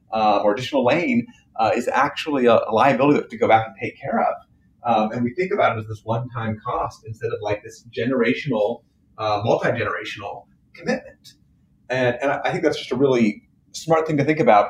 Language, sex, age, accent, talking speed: English, male, 30-49, American, 195 wpm